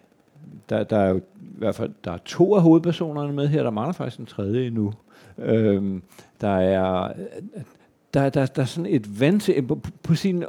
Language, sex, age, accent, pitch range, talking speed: Danish, male, 60-79, native, 105-150 Hz, 200 wpm